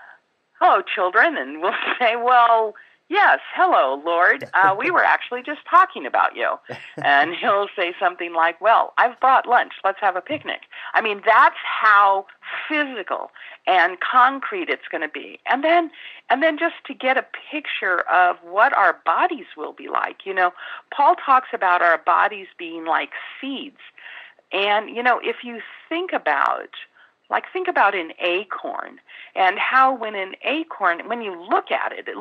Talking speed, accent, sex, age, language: 170 wpm, American, female, 40-59, English